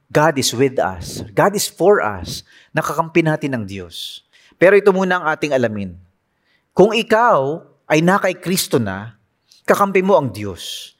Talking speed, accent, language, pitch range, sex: 155 wpm, Filipino, English, 130-205 Hz, male